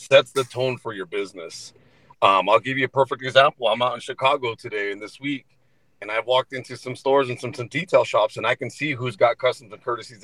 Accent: American